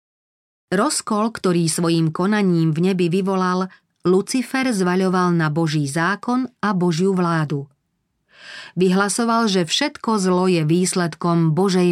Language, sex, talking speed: Slovak, female, 110 wpm